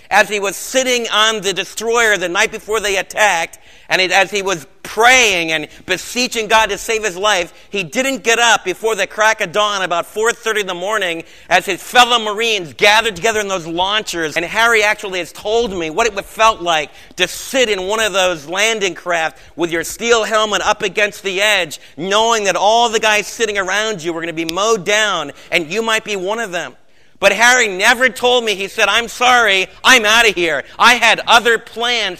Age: 40-59